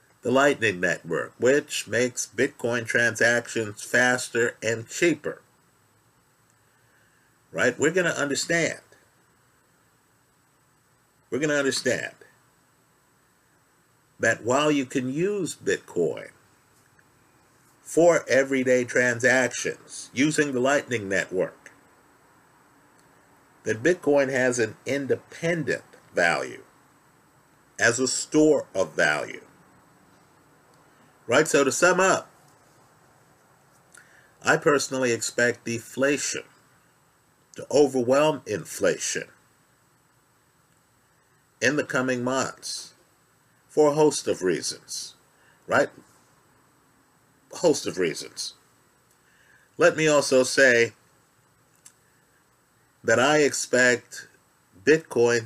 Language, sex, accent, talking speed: English, male, American, 85 wpm